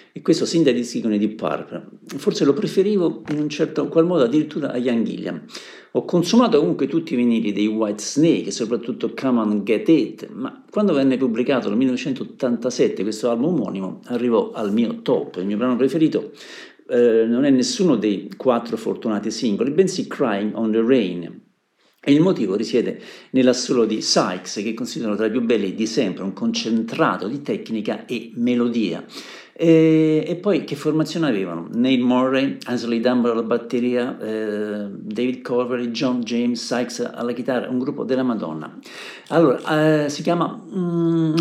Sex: male